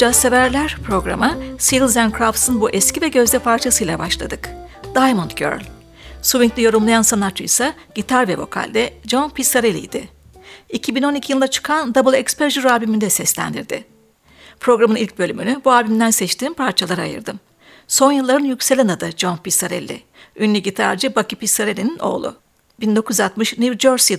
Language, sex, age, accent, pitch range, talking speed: Turkish, female, 60-79, native, 215-260 Hz, 125 wpm